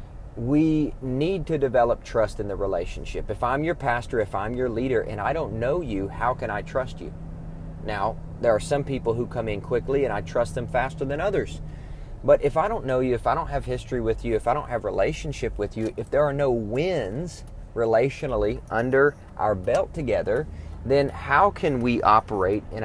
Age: 30-49